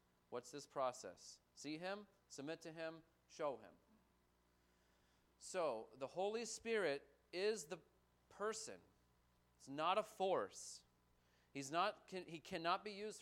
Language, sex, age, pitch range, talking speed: English, male, 30-49, 140-225 Hz, 125 wpm